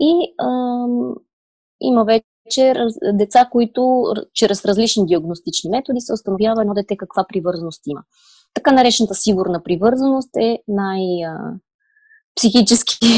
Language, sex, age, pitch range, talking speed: Bulgarian, female, 20-39, 185-245 Hz, 105 wpm